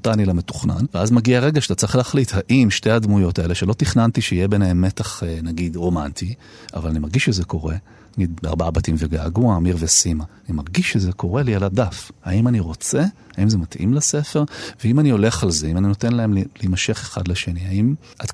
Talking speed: 195 wpm